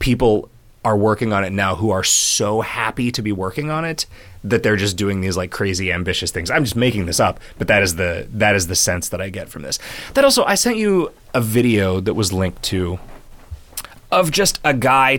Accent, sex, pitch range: American, male, 95-125 Hz